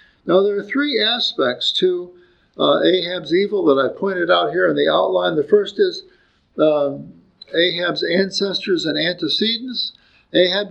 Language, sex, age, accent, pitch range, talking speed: English, male, 50-69, American, 155-250 Hz, 145 wpm